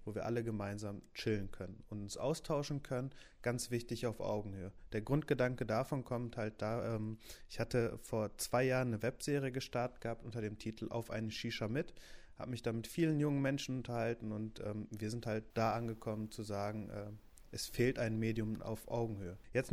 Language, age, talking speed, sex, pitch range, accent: German, 30-49, 190 wpm, male, 110-130 Hz, German